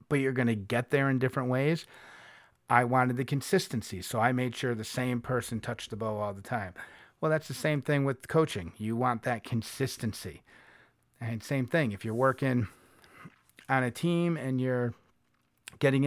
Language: English